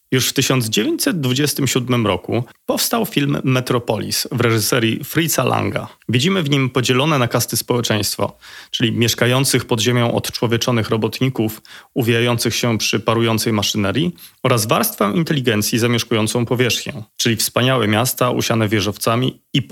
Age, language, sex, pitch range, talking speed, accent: 30-49, Polish, male, 115-135 Hz, 120 wpm, native